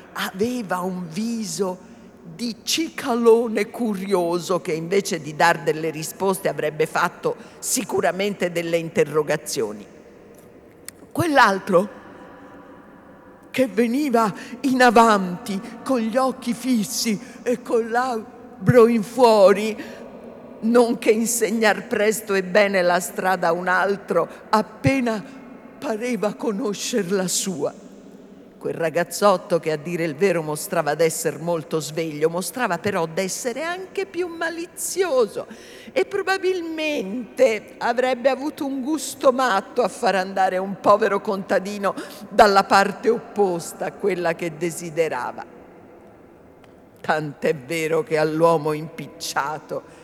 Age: 50-69